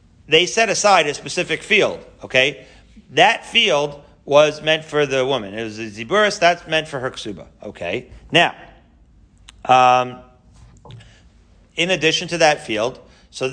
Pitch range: 125-165 Hz